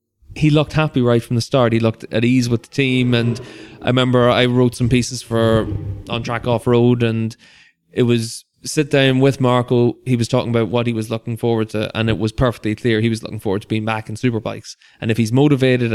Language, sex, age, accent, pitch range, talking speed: English, male, 20-39, Irish, 115-125 Hz, 230 wpm